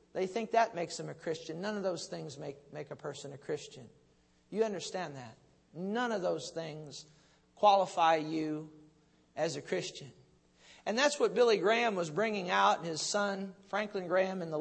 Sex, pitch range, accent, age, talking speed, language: male, 165-215 Hz, American, 50-69, 180 wpm, English